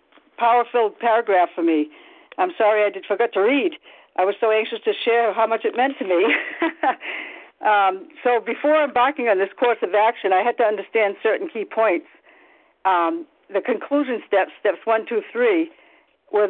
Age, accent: 60-79, American